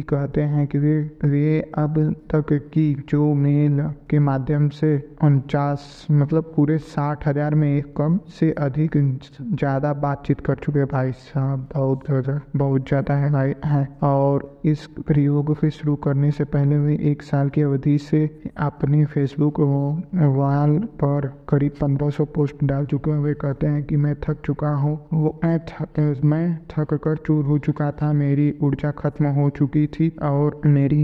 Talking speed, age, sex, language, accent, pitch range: 155 wpm, 20-39, male, Hindi, native, 140-150 Hz